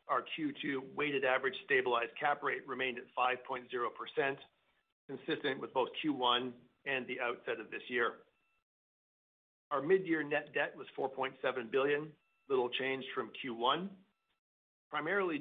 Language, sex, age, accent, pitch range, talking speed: English, male, 50-69, American, 125-150 Hz, 125 wpm